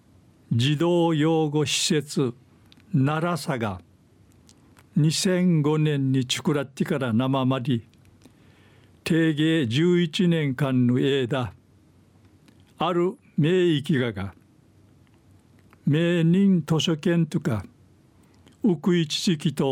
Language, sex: Japanese, male